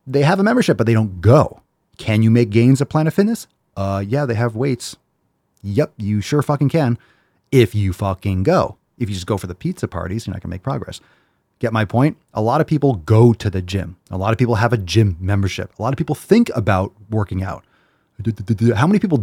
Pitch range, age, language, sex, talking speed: 100-130 Hz, 30-49, English, male, 230 wpm